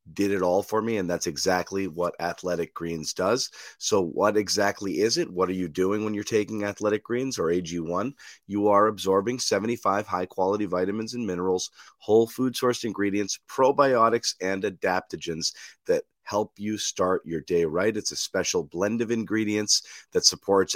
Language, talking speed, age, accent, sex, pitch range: English, 165 wpm, 30-49, American, male, 95-115 Hz